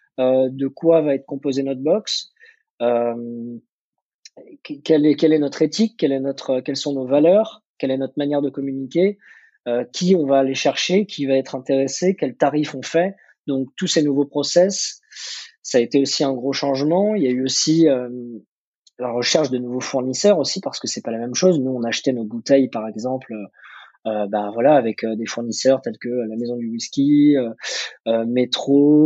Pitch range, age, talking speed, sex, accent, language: 125-150 Hz, 20-39, 200 wpm, male, French, French